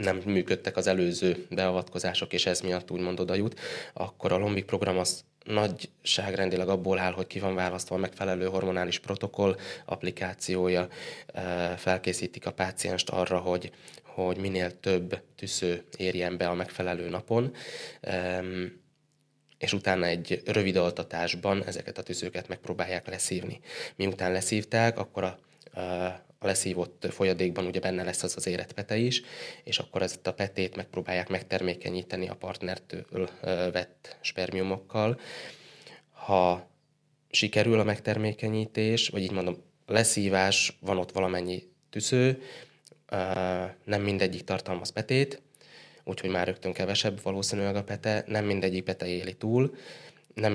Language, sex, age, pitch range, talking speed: Hungarian, male, 20-39, 90-105 Hz, 125 wpm